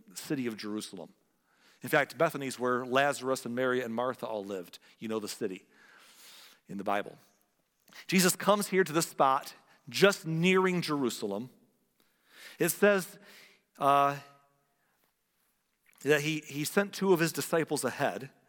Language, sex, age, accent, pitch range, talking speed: English, male, 50-69, American, 130-185 Hz, 135 wpm